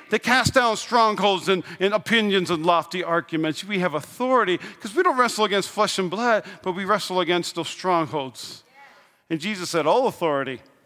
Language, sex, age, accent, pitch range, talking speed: English, male, 40-59, American, 165-210 Hz, 175 wpm